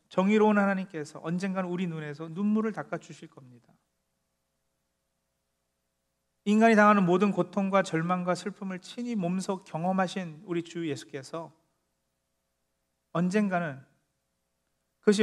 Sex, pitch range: male, 130-215 Hz